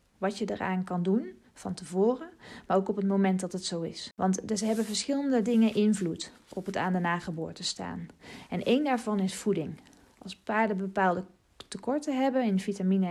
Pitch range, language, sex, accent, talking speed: 185-230 Hz, Dutch, female, Dutch, 185 wpm